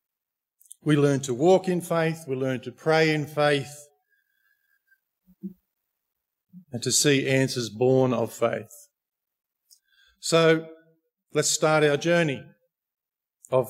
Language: English